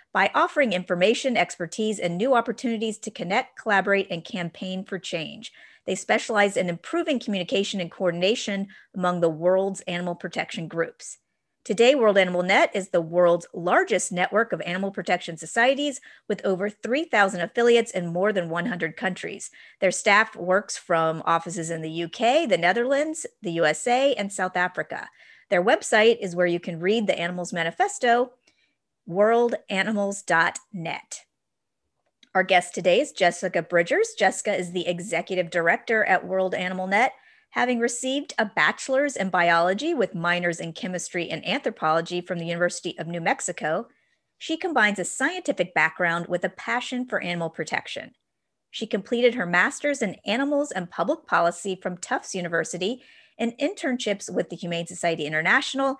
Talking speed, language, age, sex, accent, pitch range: 150 wpm, English, 40-59, female, American, 175-235 Hz